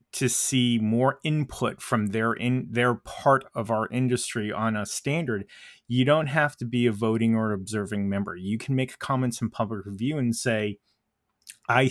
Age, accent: 30-49, American